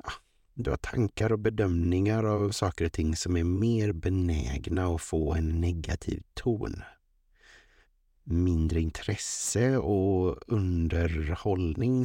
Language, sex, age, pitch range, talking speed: Swedish, male, 50-69, 85-115 Hz, 110 wpm